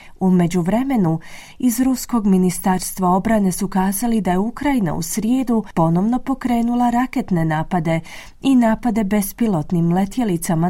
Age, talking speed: 30-49, 120 wpm